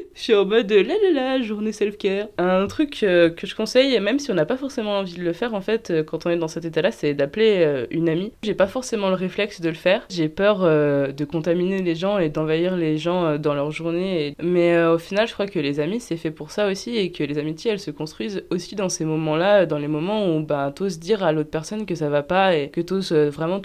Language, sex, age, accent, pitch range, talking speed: French, female, 20-39, French, 155-205 Hz, 280 wpm